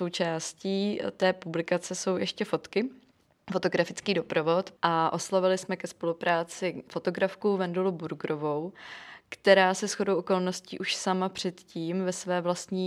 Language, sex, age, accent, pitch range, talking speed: Czech, female, 20-39, native, 165-185 Hz, 120 wpm